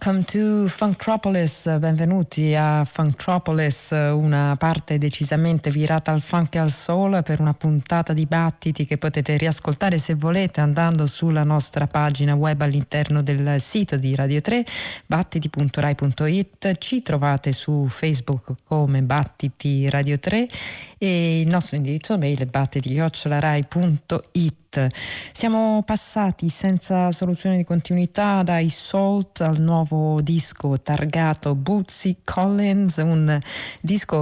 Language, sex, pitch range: Italian, female, 145-180 Hz